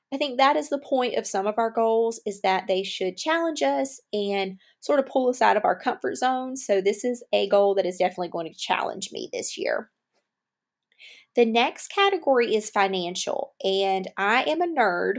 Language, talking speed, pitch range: English, 200 wpm, 195-245 Hz